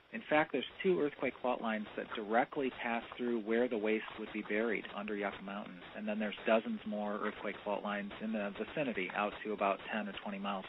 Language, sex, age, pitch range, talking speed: English, male, 40-59, 105-130 Hz, 215 wpm